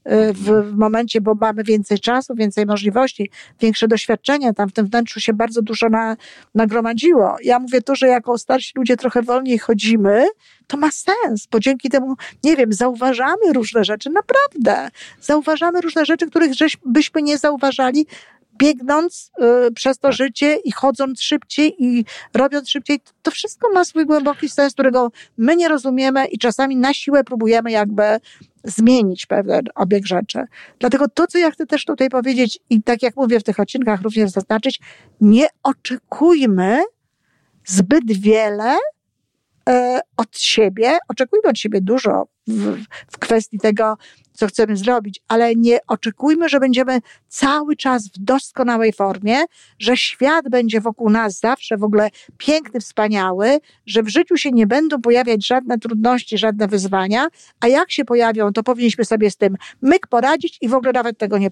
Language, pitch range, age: Polish, 220-285 Hz, 50-69